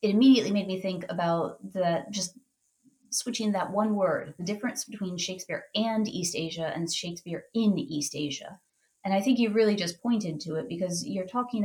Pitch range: 165-210 Hz